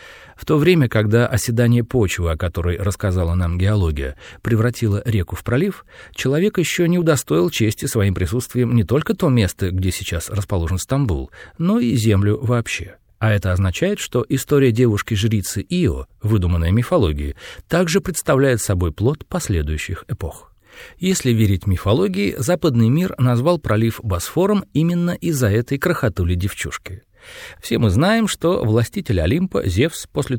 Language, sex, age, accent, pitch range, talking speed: Russian, male, 40-59, native, 95-155 Hz, 140 wpm